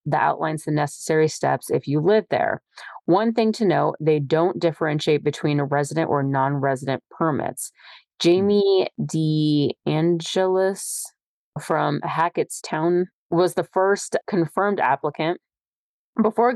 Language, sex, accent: English, female, American